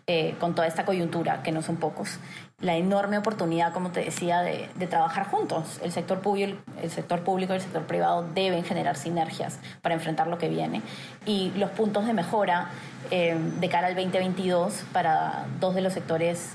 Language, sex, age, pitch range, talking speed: Spanish, female, 20-39, 170-195 Hz, 190 wpm